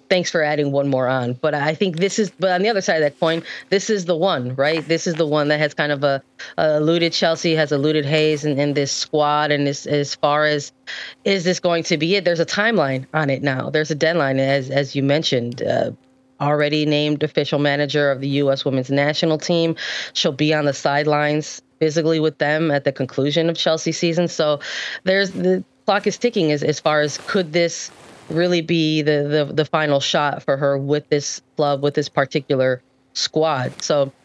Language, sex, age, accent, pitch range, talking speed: English, female, 20-39, American, 145-170 Hz, 210 wpm